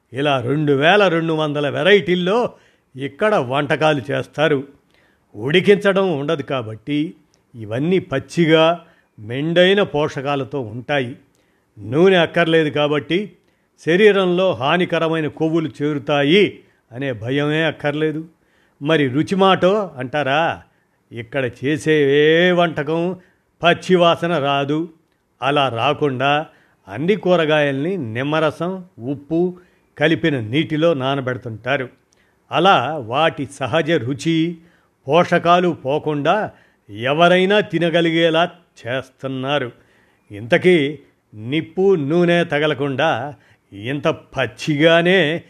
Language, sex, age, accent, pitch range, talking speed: Telugu, male, 50-69, native, 140-170 Hz, 80 wpm